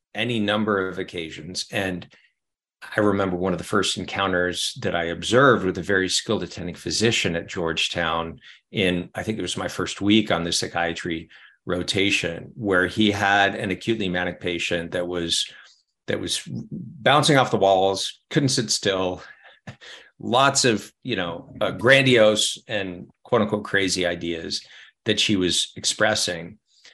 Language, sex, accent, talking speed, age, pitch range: English, male, American, 150 wpm, 50-69, 90-110 Hz